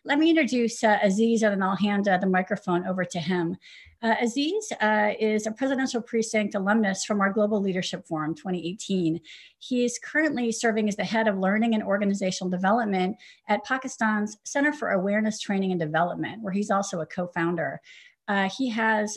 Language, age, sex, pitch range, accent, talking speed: English, 40-59, female, 185-225 Hz, American, 175 wpm